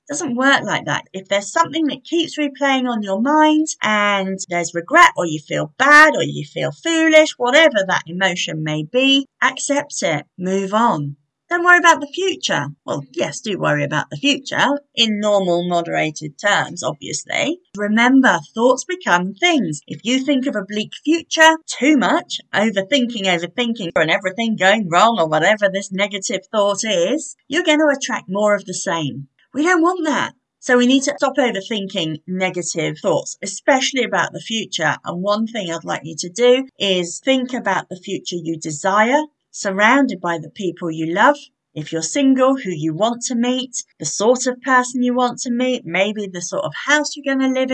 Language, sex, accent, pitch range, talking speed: English, female, British, 190-285 Hz, 180 wpm